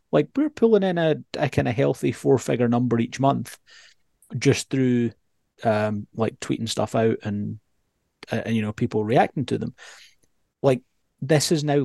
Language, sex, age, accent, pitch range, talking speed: English, male, 30-49, British, 110-135 Hz, 165 wpm